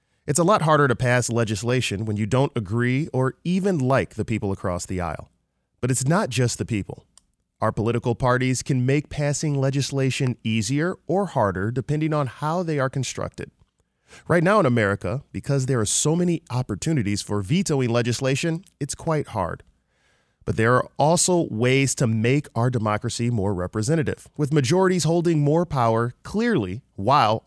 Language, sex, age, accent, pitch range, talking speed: English, male, 20-39, American, 110-150 Hz, 165 wpm